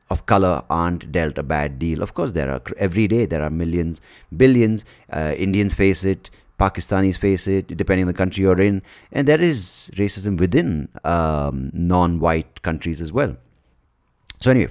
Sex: male